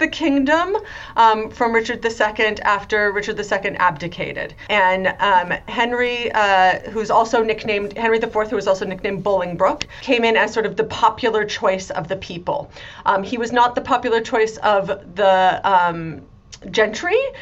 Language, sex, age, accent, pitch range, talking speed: English, female, 30-49, American, 200-250 Hz, 160 wpm